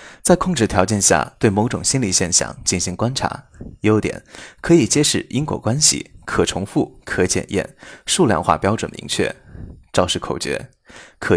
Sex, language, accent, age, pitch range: male, Chinese, native, 20-39, 90-120 Hz